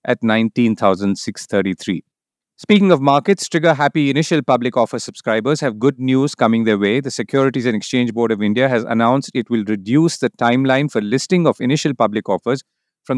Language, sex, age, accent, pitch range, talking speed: English, male, 40-59, Indian, 115-150 Hz, 175 wpm